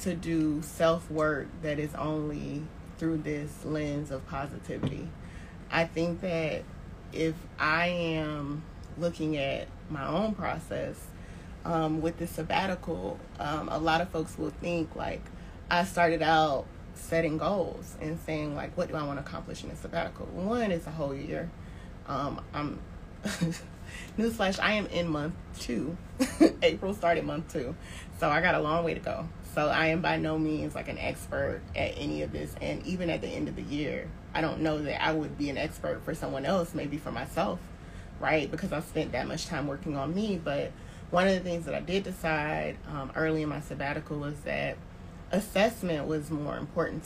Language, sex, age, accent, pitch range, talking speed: English, female, 30-49, American, 145-170 Hz, 185 wpm